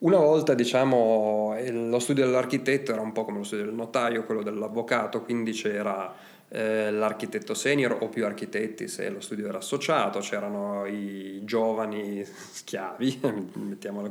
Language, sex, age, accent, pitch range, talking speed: Italian, male, 30-49, native, 105-125 Hz, 145 wpm